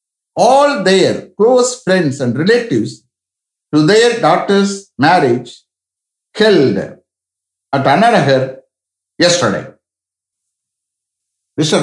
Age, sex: 60-79, male